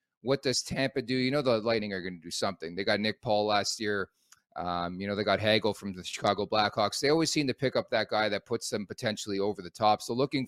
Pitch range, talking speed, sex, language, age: 105-130 Hz, 265 wpm, male, English, 30-49